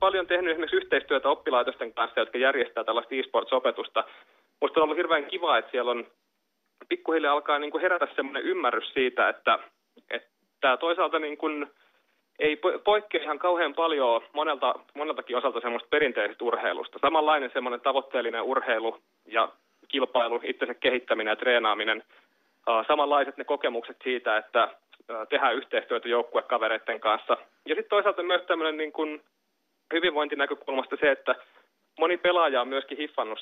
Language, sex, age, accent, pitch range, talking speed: Finnish, male, 30-49, native, 135-175 Hz, 130 wpm